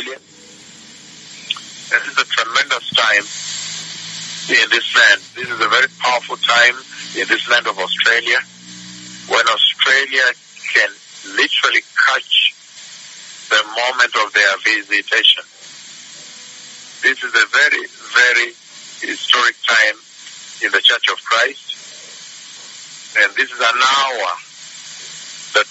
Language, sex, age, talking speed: English, male, 50-69, 110 wpm